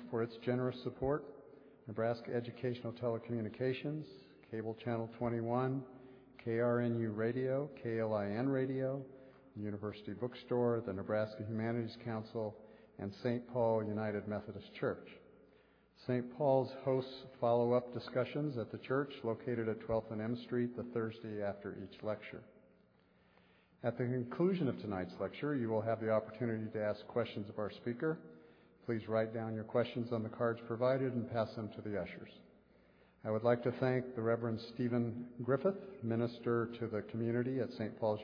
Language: English